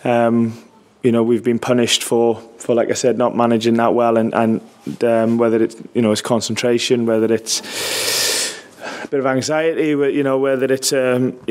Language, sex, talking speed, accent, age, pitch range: English, male, 205 wpm, British, 20-39, 115-135 Hz